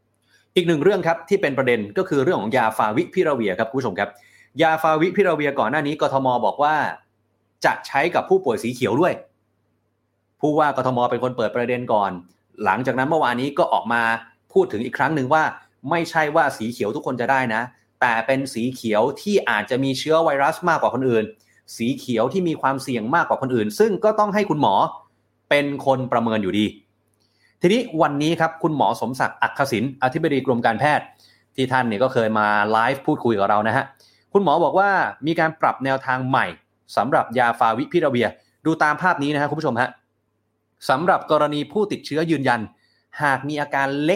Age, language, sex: 30-49, Thai, male